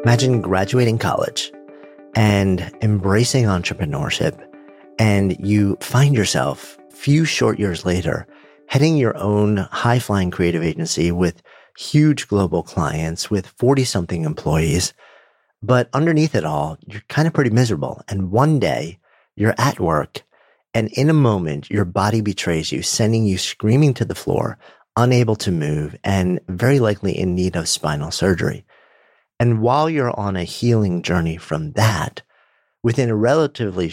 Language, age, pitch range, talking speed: English, 40-59, 90-125 Hz, 140 wpm